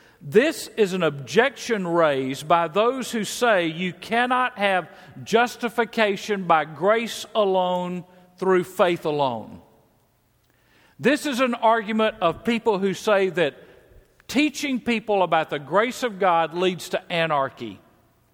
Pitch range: 165-225 Hz